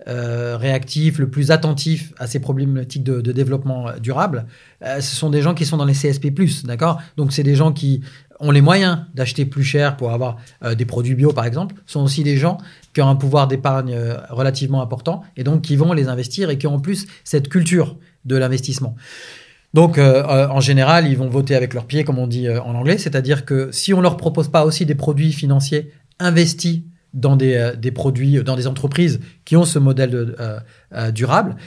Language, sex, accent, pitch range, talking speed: French, male, French, 130-160 Hz, 220 wpm